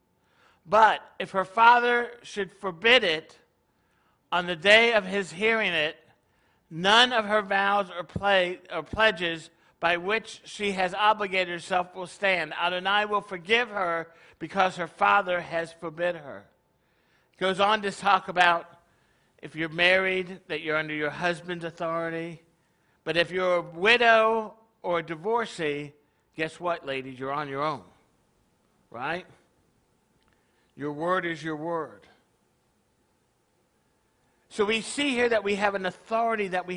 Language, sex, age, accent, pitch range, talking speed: English, male, 60-79, American, 165-200 Hz, 145 wpm